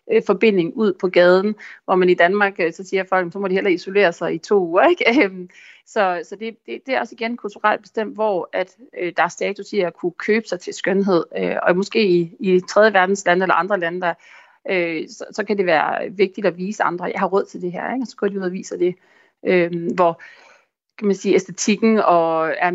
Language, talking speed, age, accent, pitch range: Danish, 230 wpm, 30-49, native, 175-225 Hz